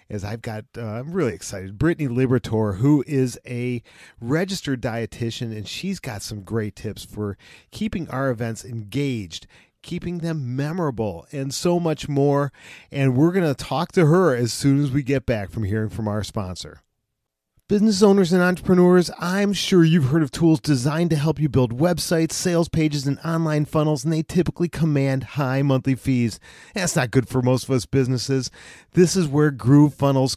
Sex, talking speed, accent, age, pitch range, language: male, 180 wpm, American, 40-59, 130-175 Hz, English